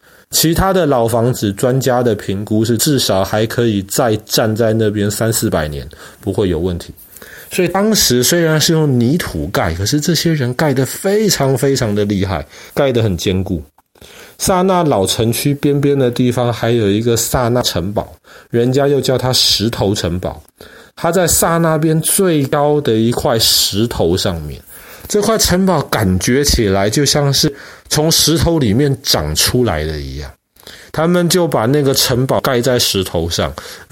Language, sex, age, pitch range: Chinese, male, 30-49, 100-140 Hz